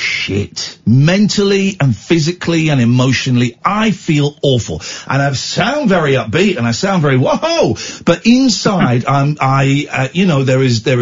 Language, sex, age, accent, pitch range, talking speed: English, male, 50-69, British, 120-190 Hz, 165 wpm